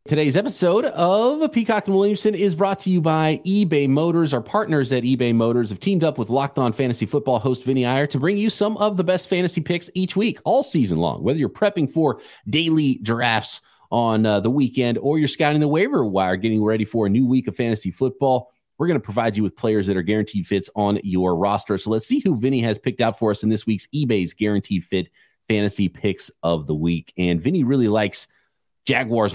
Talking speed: 220 wpm